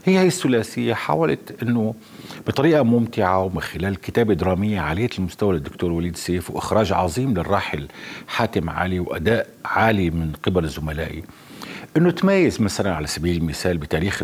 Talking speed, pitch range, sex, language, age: 135 wpm, 85-145 Hz, male, Arabic, 50-69